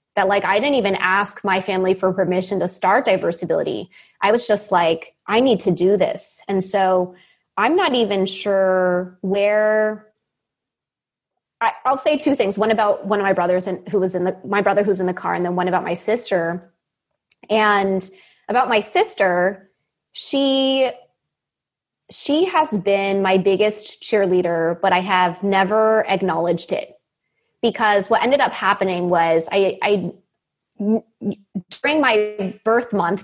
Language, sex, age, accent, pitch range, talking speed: English, female, 20-39, American, 190-235 Hz, 155 wpm